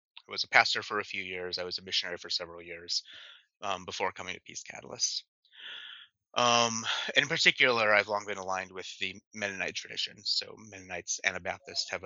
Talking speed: 185 wpm